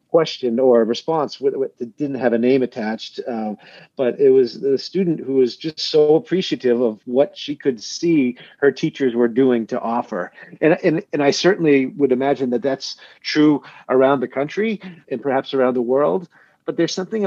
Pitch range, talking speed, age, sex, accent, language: 135-180 Hz, 185 wpm, 40-59, male, American, English